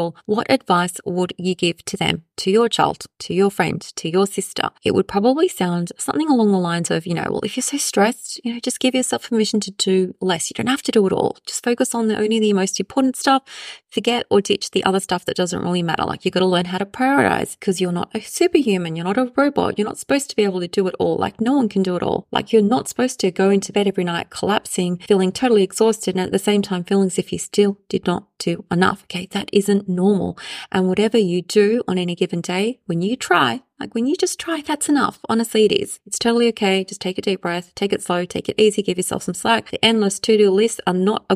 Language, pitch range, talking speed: English, 185-230 Hz, 260 wpm